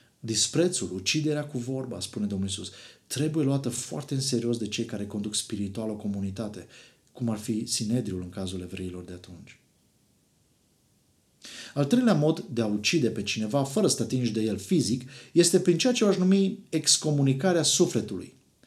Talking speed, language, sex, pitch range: 165 wpm, Romanian, male, 115-150 Hz